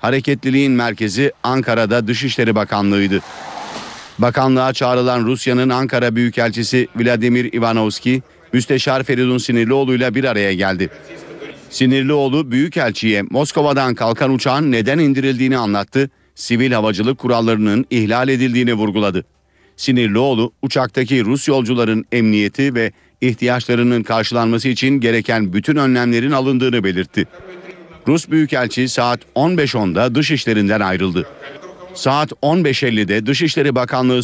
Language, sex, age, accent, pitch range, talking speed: Turkish, male, 50-69, native, 115-135 Hz, 100 wpm